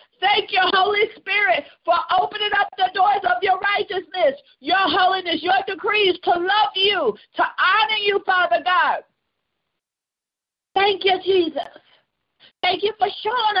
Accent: American